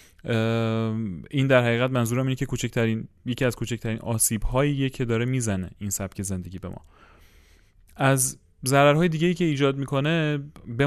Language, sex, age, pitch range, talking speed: Persian, male, 30-49, 110-140 Hz, 140 wpm